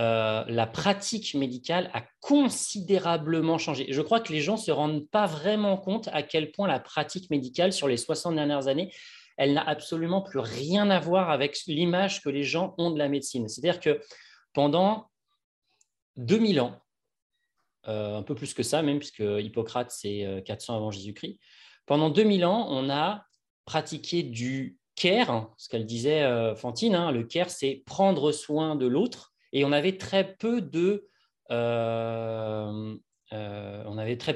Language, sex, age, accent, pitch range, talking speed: French, male, 30-49, French, 125-185 Hz, 170 wpm